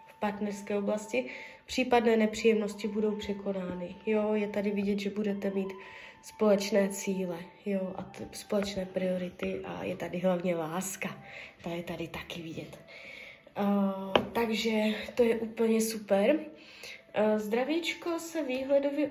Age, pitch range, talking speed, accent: 20-39, 205-265 Hz, 125 wpm, native